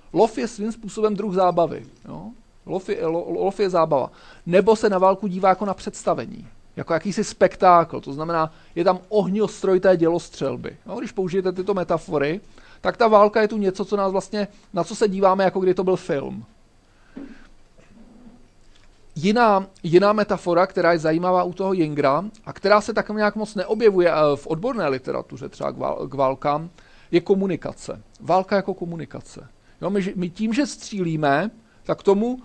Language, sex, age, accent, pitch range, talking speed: Czech, male, 40-59, native, 170-210 Hz, 170 wpm